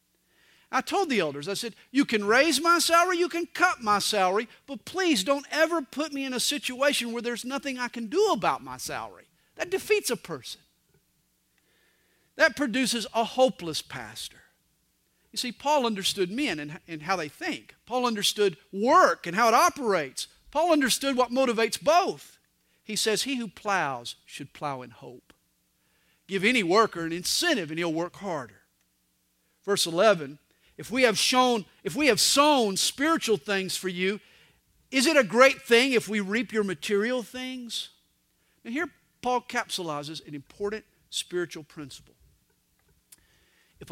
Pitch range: 170-255 Hz